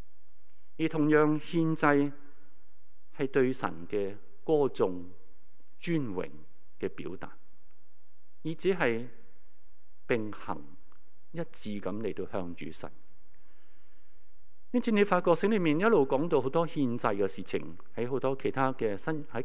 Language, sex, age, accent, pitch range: Chinese, male, 50-69, native, 90-145 Hz